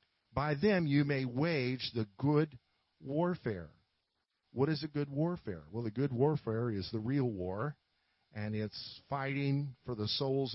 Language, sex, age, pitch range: English, male, 50-69, 110-145 Hz